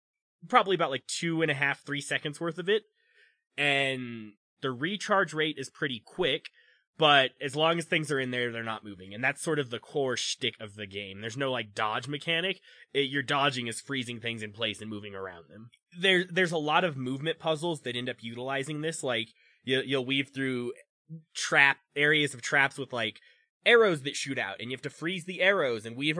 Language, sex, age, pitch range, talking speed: English, male, 20-39, 120-160 Hz, 205 wpm